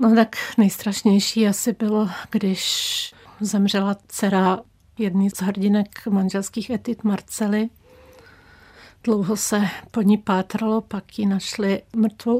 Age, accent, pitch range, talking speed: 50-69, native, 195-215 Hz, 110 wpm